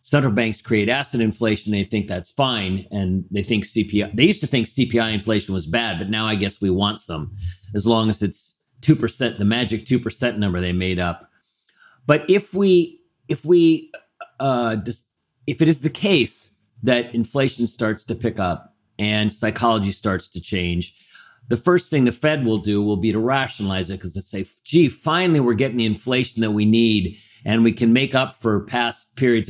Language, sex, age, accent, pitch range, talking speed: English, male, 40-59, American, 105-130 Hz, 190 wpm